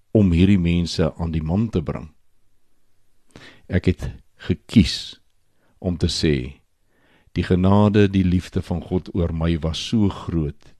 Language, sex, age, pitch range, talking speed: Swedish, male, 60-79, 80-100 Hz, 140 wpm